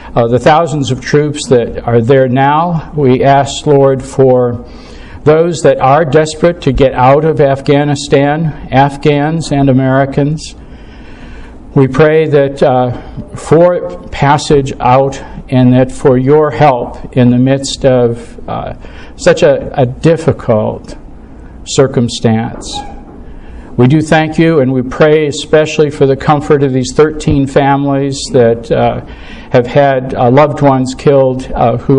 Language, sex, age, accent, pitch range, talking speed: English, male, 60-79, American, 130-150 Hz, 135 wpm